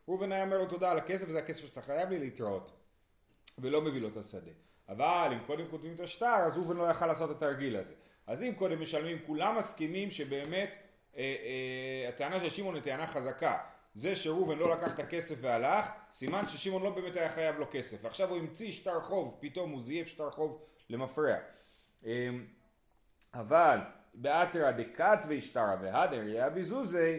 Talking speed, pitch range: 175 wpm, 140-180 Hz